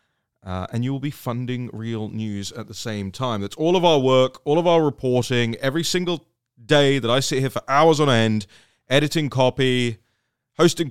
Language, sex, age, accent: English, male, 30-49, British